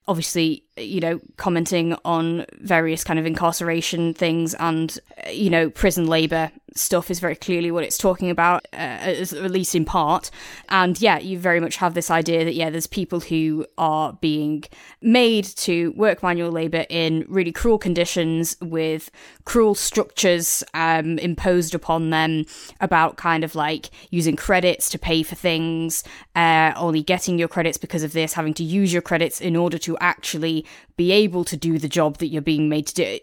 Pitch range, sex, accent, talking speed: 155-175 Hz, female, British, 175 wpm